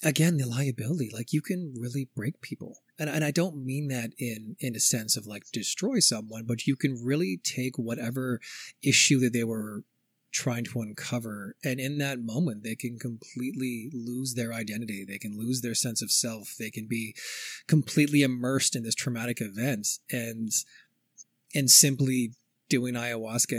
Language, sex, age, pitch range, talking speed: English, male, 30-49, 110-135 Hz, 170 wpm